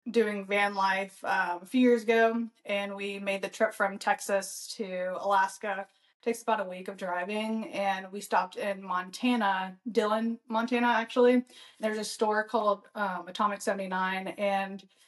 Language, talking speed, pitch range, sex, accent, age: English, 155 wpm, 195-225 Hz, female, American, 20-39